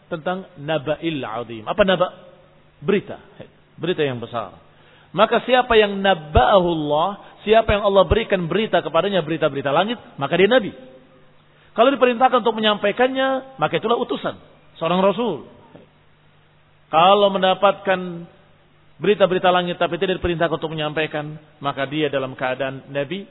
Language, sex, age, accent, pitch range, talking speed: Indonesian, male, 40-59, native, 150-195 Hz, 120 wpm